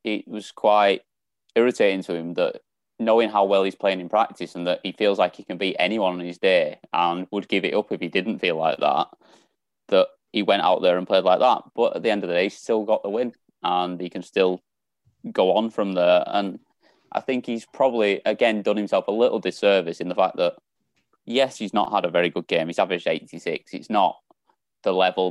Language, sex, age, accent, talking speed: English, male, 20-39, British, 230 wpm